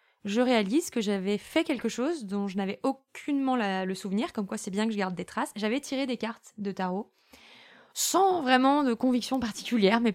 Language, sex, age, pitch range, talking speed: French, female, 20-39, 195-235 Hz, 205 wpm